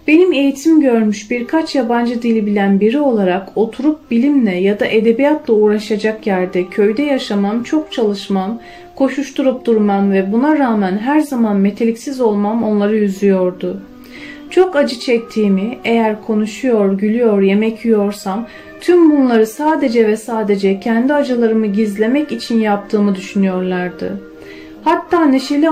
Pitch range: 205-270 Hz